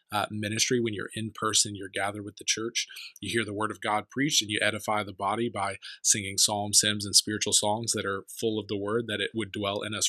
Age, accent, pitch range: 20-39, American, 105-120 Hz